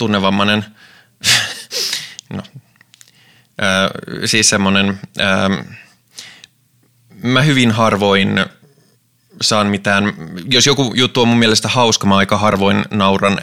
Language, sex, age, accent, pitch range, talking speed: Finnish, male, 20-39, native, 100-120 Hz, 100 wpm